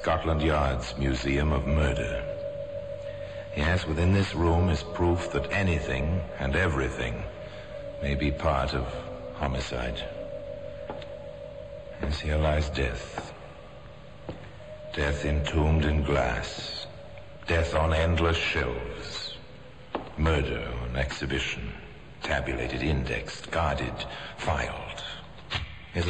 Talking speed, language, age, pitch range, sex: 90 wpm, English, 60-79, 70-85 Hz, male